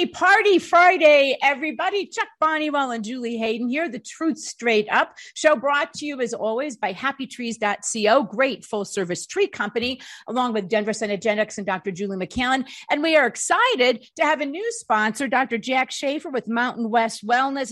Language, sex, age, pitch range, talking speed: English, female, 50-69, 230-315 Hz, 165 wpm